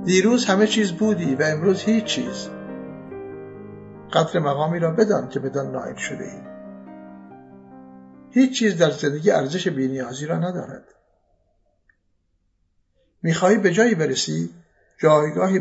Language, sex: Persian, male